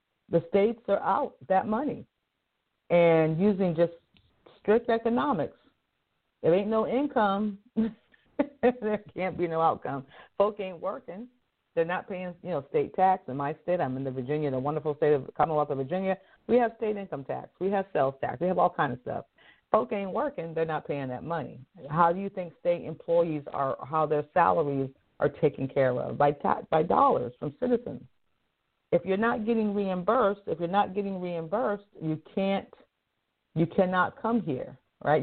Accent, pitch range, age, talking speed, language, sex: American, 155-210 Hz, 40-59, 175 wpm, English, female